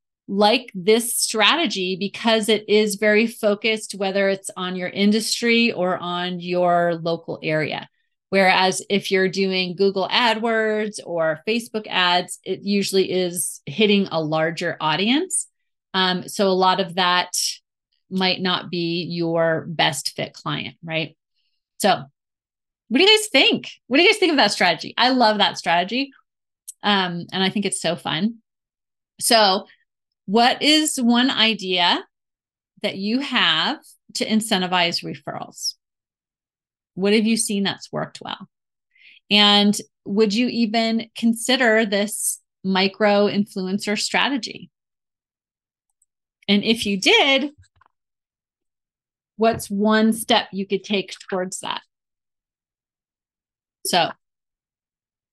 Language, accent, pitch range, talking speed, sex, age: English, American, 185-225 Hz, 120 wpm, female, 30-49